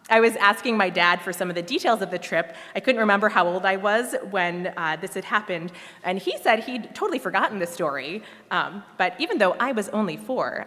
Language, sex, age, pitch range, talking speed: English, female, 20-39, 170-225 Hz, 230 wpm